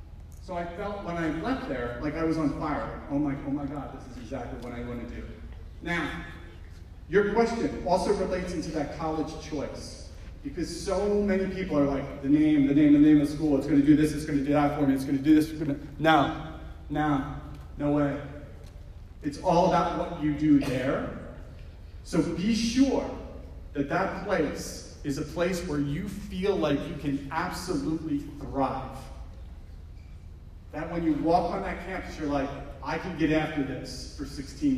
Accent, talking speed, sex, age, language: American, 190 wpm, male, 30-49, English